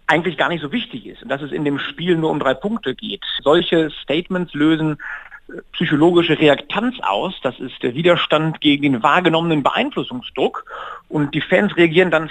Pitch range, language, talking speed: 145-195 Hz, German, 175 wpm